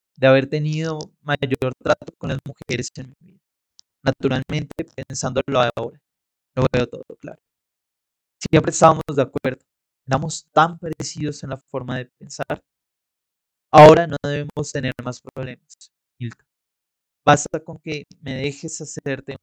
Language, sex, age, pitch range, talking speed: Spanish, male, 30-49, 130-150 Hz, 135 wpm